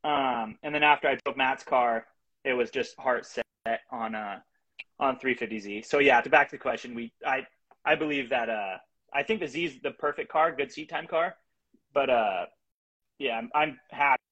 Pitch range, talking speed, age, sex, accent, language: 125-155 Hz, 195 wpm, 30-49, male, American, English